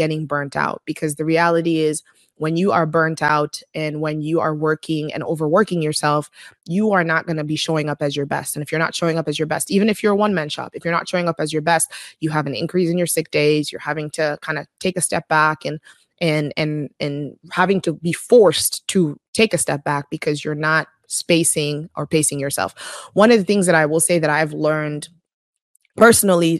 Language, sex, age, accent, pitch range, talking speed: English, female, 20-39, American, 150-170 Hz, 235 wpm